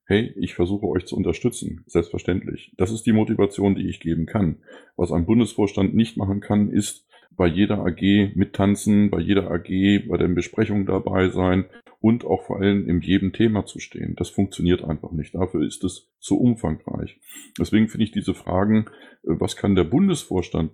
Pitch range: 90-115 Hz